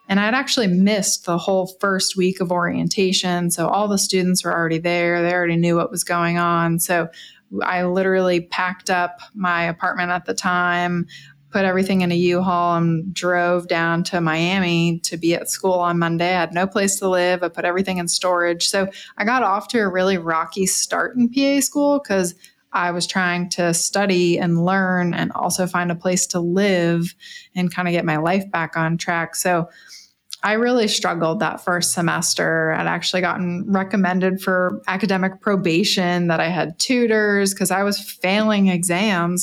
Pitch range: 175-195 Hz